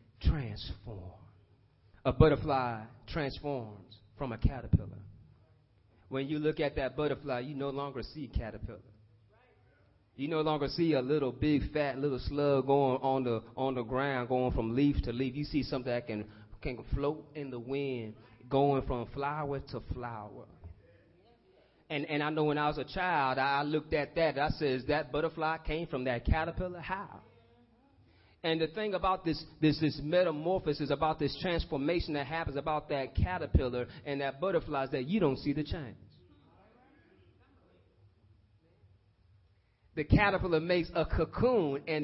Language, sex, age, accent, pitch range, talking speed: English, male, 30-49, American, 110-155 Hz, 155 wpm